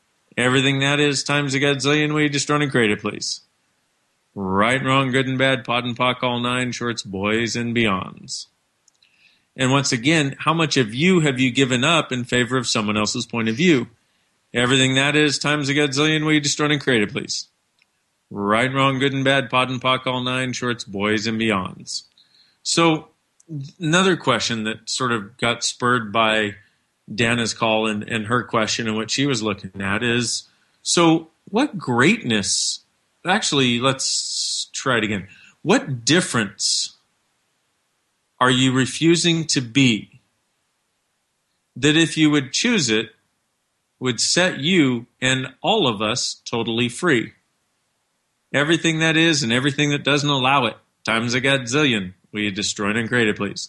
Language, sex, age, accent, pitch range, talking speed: English, male, 40-59, American, 115-145 Hz, 165 wpm